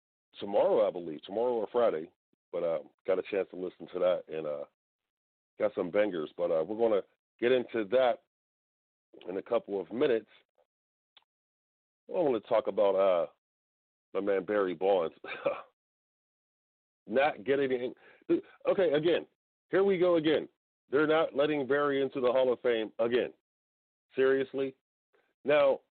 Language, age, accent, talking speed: English, 40-59, American, 150 wpm